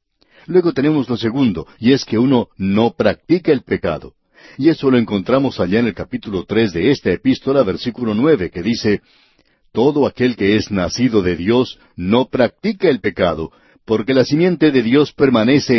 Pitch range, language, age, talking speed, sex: 110-155 Hz, Spanish, 60-79, 170 wpm, male